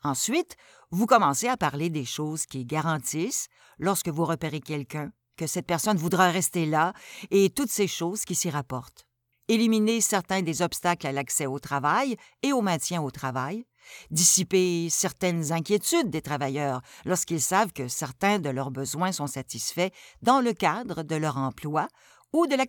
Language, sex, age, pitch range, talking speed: French, female, 60-79, 145-215 Hz, 165 wpm